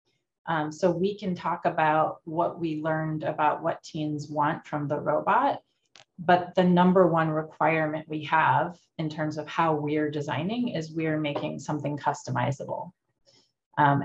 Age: 30-49